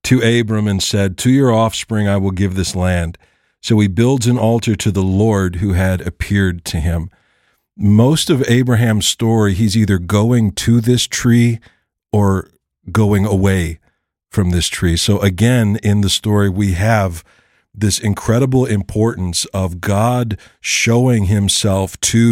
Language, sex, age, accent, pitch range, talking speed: English, male, 50-69, American, 100-120 Hz, 150 wpm